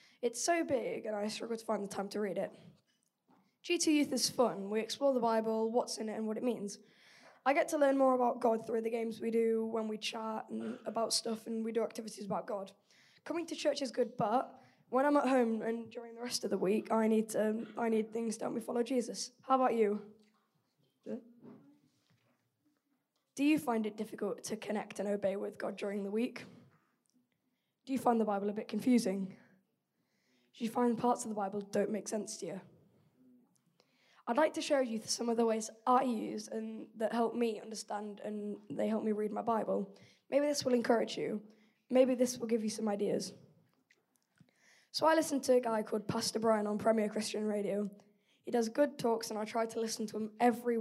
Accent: British